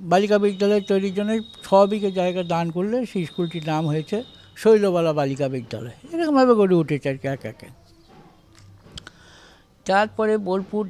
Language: Bengali